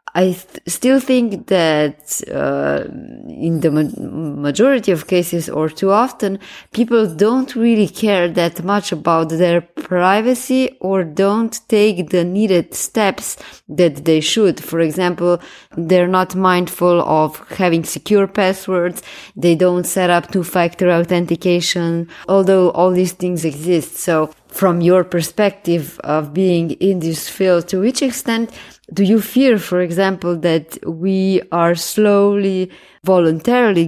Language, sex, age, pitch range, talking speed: English, female, 20-39, 165-190 Hz, 130 wpm